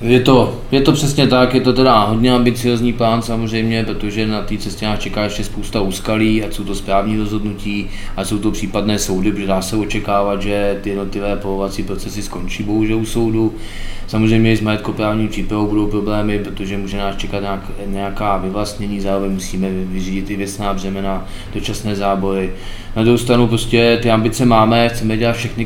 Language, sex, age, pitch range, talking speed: Czech, male, 20-39, 100-110 Hz, 180 wpm